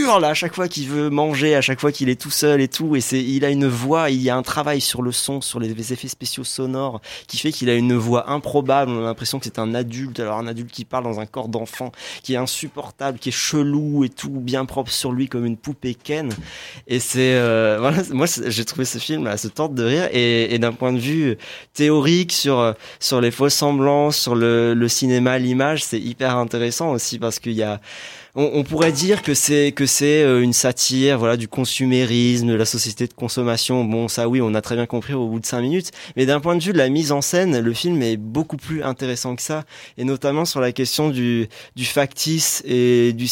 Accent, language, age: French, French, 20-39